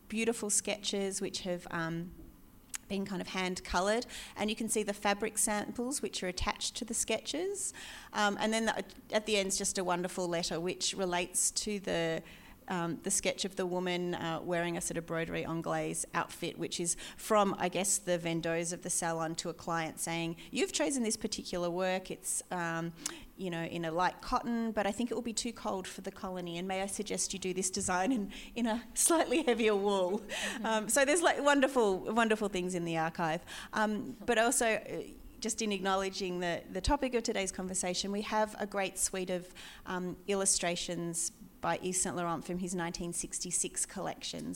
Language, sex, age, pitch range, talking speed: English, female, 30-49, 180-220 Hz, 195 wpm